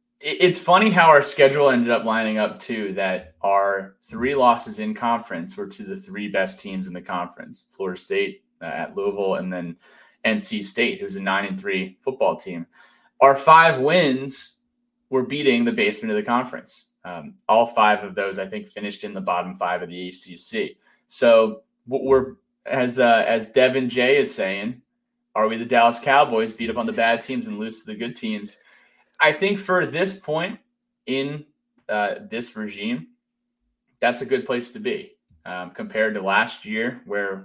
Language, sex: English, male